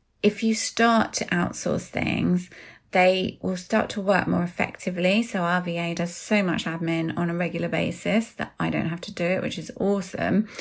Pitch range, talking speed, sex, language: 170-205 Hz, 190 wpm, female, English